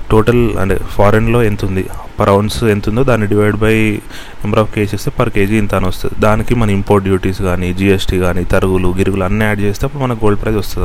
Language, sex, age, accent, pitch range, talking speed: Telugu, male, 30-49, native, 100-120 Hz, 195 wpm